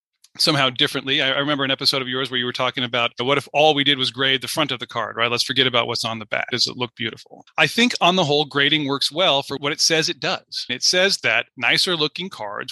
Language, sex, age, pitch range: English, male, 30-49, 120-145 Hz